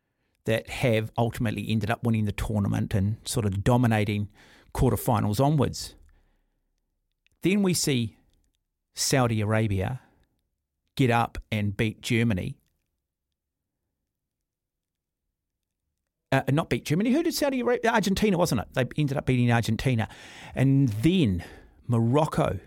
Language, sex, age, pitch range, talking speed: English, male, 40-59, 105-135 Hz, 115 wpm